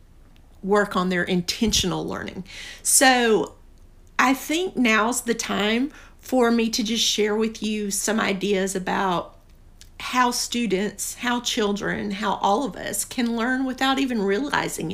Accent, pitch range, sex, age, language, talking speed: American, 190-225 Hz, female, 50-69, English, 135 wpm